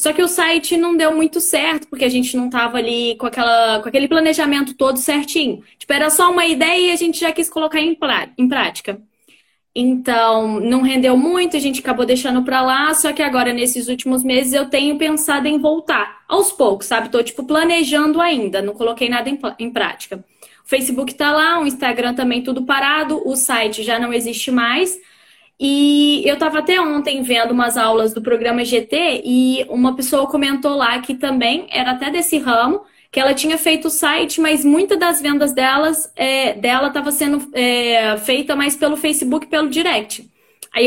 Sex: female